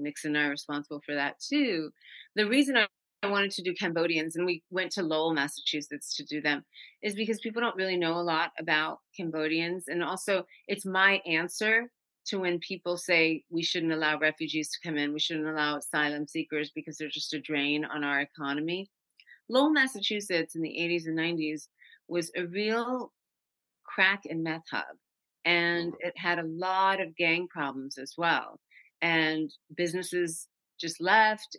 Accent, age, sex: American, 40-59, female